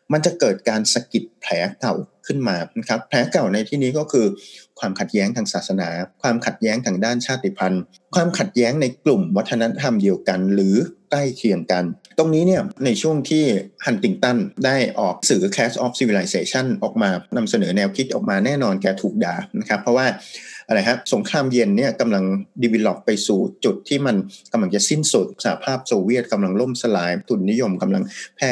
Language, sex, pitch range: Thai, male, 100-150 Hz